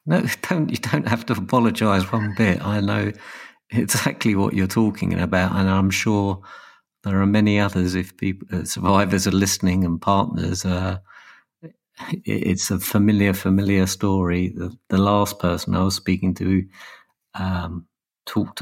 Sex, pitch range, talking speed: male, 95-105 Hz, 150 wpm